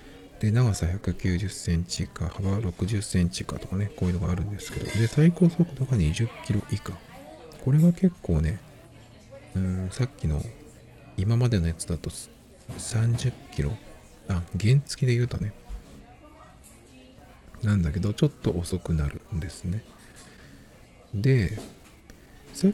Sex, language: male, Japanese